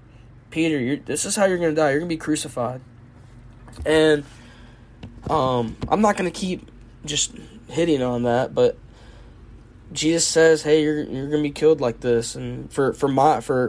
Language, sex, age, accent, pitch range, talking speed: English, male, 10-29, American, 120-150 Hz, 185 wpm